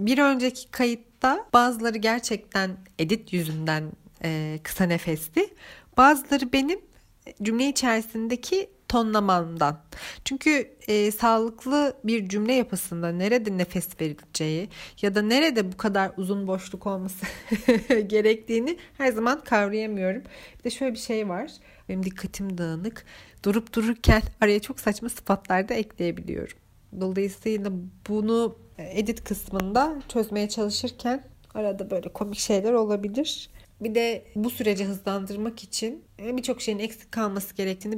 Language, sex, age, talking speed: Turkish, female, 40-59, 115 wpm